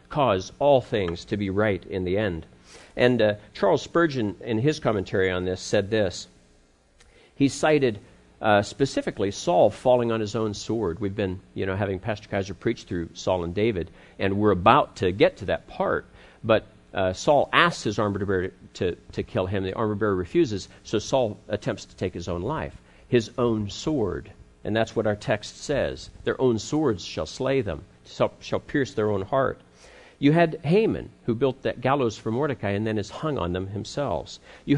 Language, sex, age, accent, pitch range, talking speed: English, male, 50-69, American, 95-130 Hz, 185 wpm